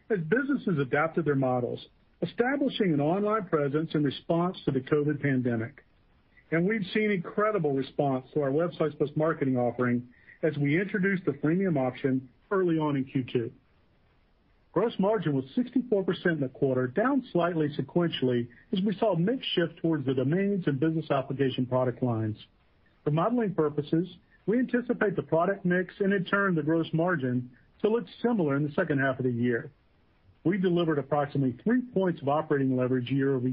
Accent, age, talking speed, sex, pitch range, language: American, 50-69, 170 wpm, male, 135-195 Hz, English